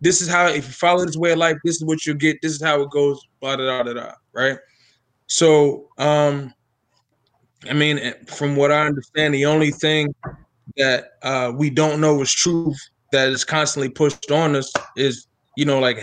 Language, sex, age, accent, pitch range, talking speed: English, male, 20-39, American, 140-170 Hz, 200 wpm